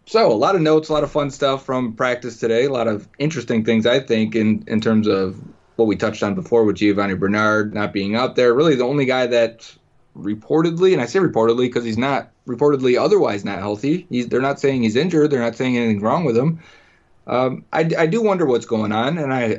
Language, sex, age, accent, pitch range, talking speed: English, male, 30-49, American, 105-135 Hz, 235 wpm